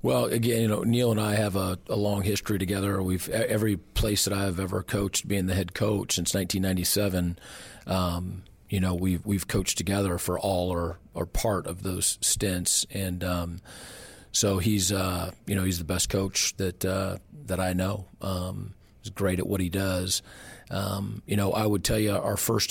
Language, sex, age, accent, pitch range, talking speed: English, male, 40-59, American, 90-100 Hz, 195 wpm